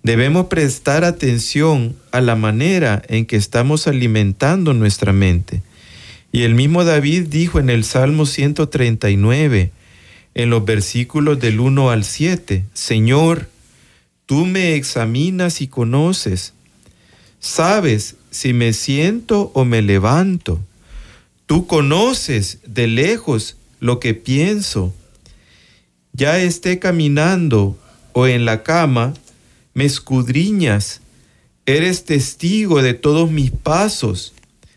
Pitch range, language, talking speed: 115-155 Hz, Spanish, 110 wpm